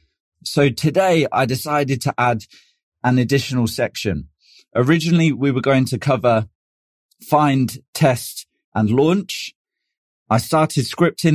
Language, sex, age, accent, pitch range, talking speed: English, male, 30-49, British, 115-145 Hz, 115 wpm